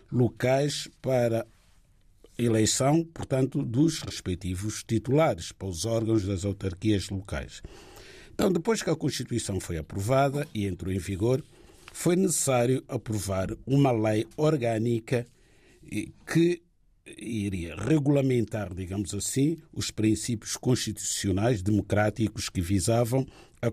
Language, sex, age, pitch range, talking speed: Portuguese, male, 50-69, 100-145 Hz, 105 wpm